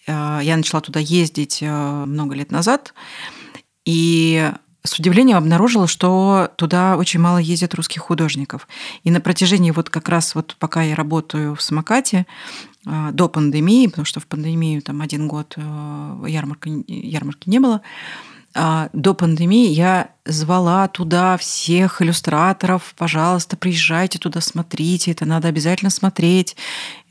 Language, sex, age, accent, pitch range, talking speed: Russian, female, 30-49, native, 155-185 Hz, 120 wpm